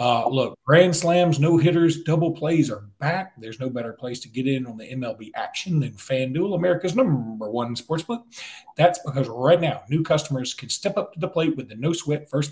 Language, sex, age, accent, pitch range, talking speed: English, male, 40-59, American, 125-160 Hz, 210 wpm